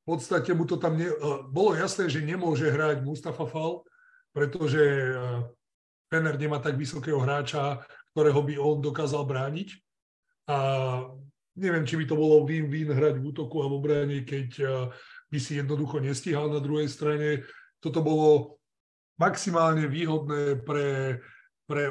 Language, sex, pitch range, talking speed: Slovak, male, 140-160 Hz, 140 wpm